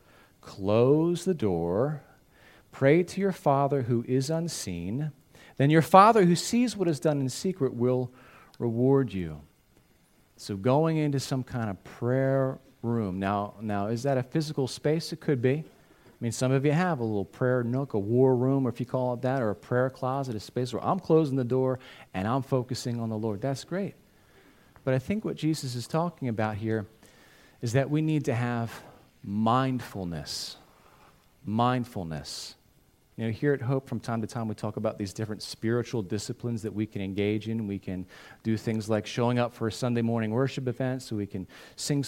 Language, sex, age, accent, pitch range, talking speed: English, male, 40-59, American, 115-145 Hz, 190 wpm